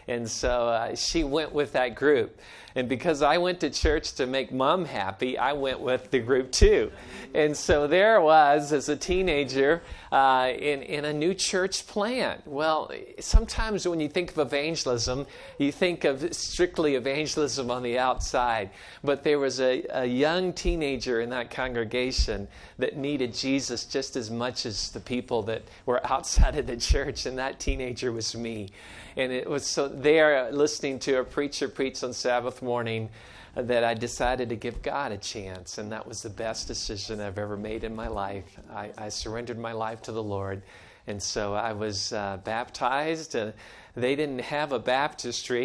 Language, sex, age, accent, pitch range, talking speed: English, male, 50-69, American, 115-150 Hz, 180 wpm